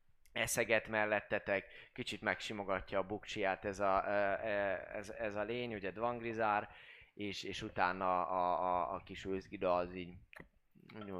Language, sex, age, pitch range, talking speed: Hungarian, male, 20-39, 95-115 Hz, 130 wpm